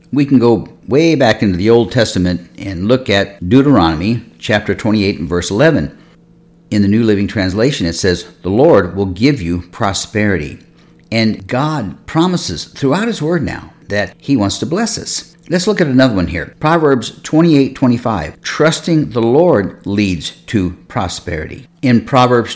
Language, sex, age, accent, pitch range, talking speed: English, male, 50-69, American, 95-135 Hz, 160 wpm